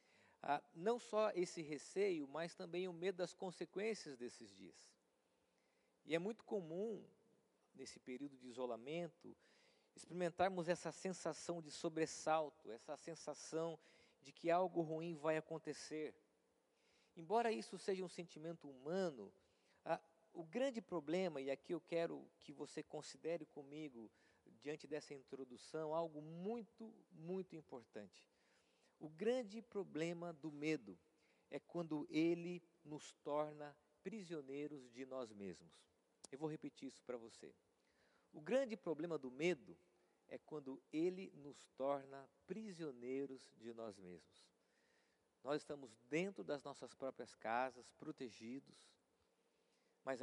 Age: 50-69